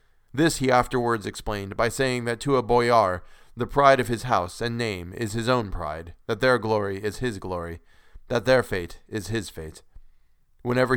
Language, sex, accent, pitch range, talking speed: English, male, American, 100-130 Hz, 185 wpm